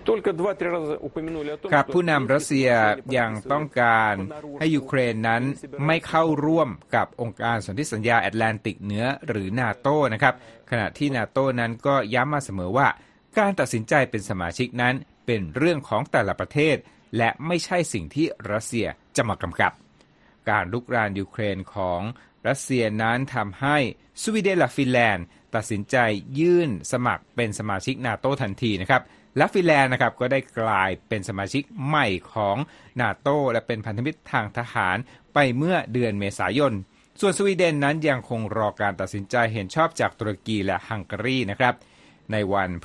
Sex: male